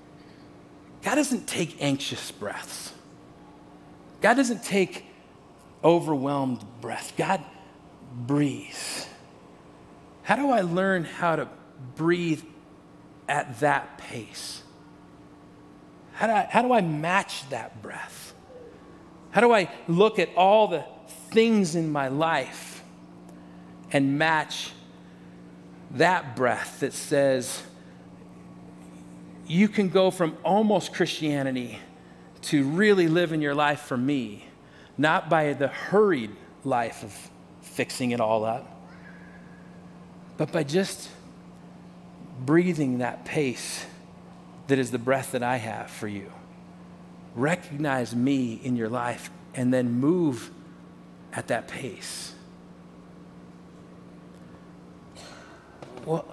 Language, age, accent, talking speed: English, 40-59, American, 105 wpm